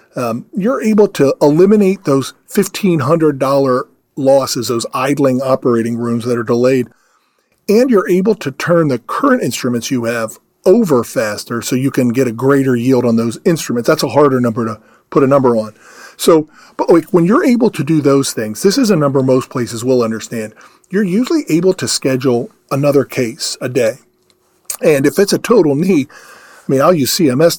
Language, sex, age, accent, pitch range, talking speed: English, male, 40-59, American, 120-155 Hz, 180 wpm